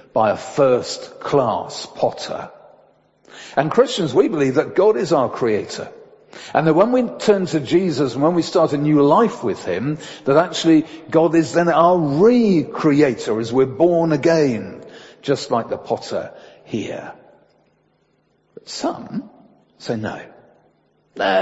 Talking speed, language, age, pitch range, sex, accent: 140 wpm, English, 50-69, 130-180 Hz, male, British